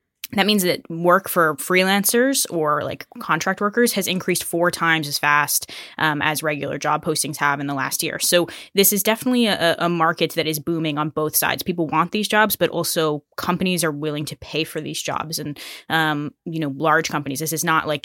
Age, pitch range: 10-29, 150-175 Hz